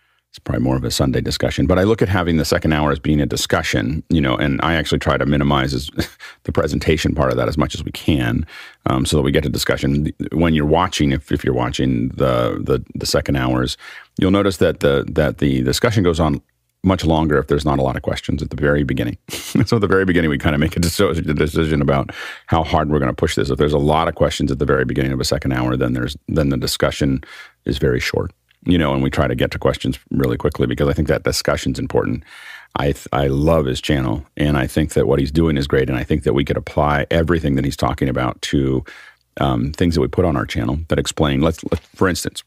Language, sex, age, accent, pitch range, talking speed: English, male, 40-59, American, 65-80 Hz, 255 wpm